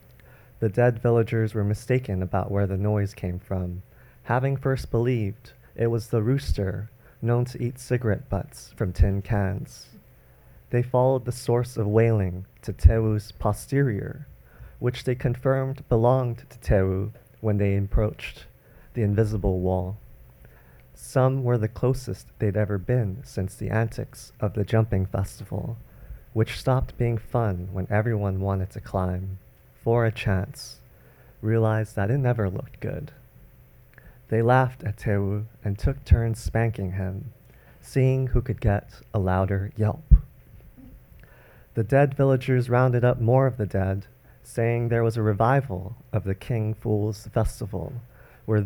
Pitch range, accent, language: 100-125 Hz, American, English